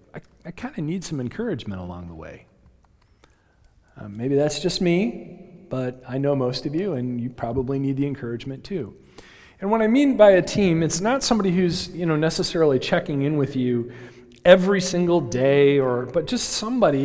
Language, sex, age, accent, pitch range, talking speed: English, male, 40-59, American, 130-185 Hz, 185 wpm